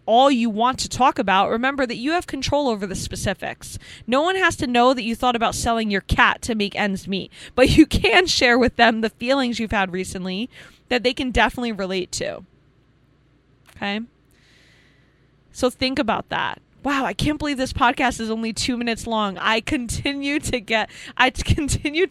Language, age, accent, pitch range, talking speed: English, 20-39, American, 200-280 Hz, 185 wpm